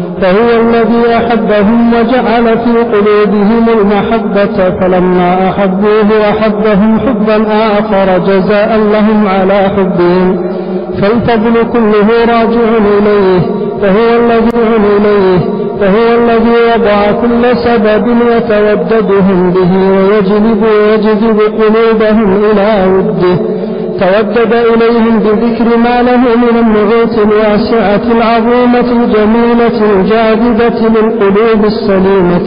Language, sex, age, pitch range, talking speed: Arabic, male, 50-69, 195-230 Hz, 85 wpm